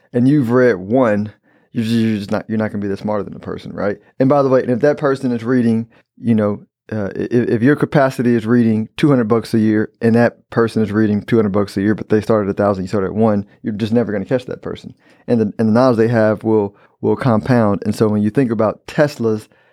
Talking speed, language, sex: 250 wpm, English, male